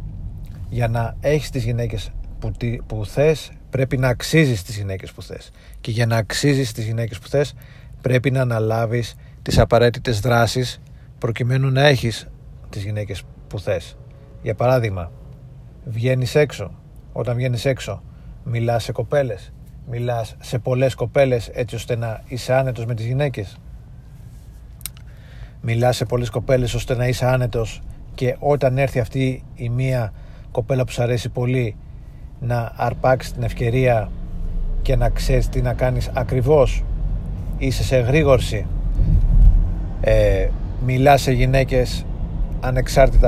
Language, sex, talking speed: Greek, male, 130 wpm